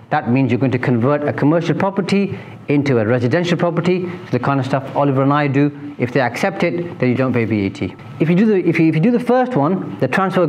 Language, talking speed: English, 255 wpm